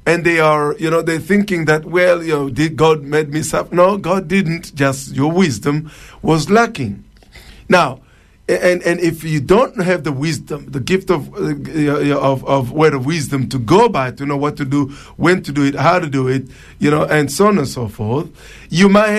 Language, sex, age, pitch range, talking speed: English, male, 50-69, 135-180 Hz, 215 wpm